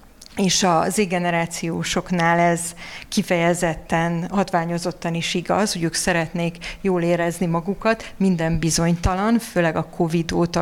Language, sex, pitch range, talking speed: Hungarian, female, 175-195 Hz, 115 wpm